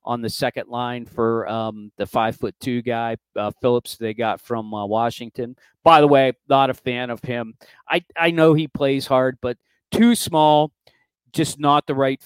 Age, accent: 40-59, American